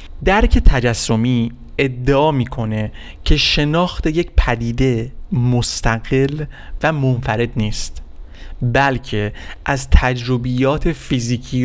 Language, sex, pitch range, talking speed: Persian, male, 115-140 Hz, 80 wpm